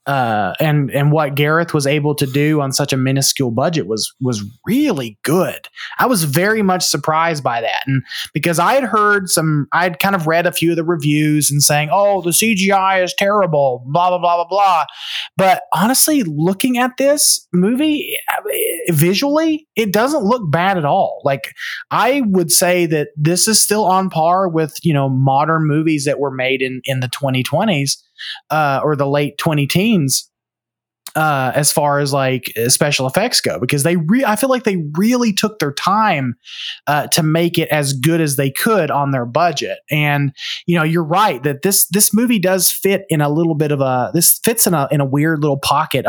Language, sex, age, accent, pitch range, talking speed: English, male, 20-39, American, 140-185 Hz, 195 wpm